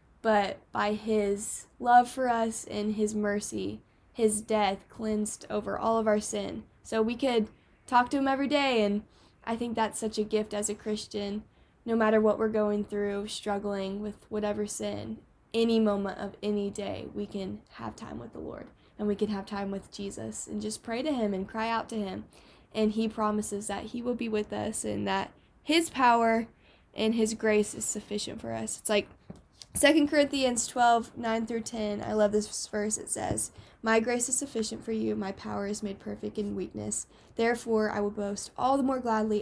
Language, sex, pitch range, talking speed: English, female, 205-230 Hz, 195 wpm